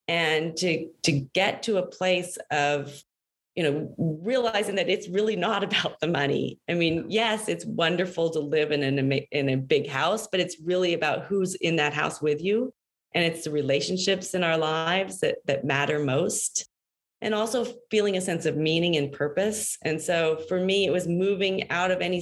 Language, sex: English, female